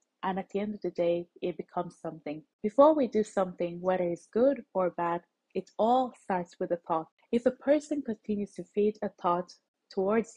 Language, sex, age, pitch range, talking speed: English, female, 20-39, 175-215 Hz, 195 wpm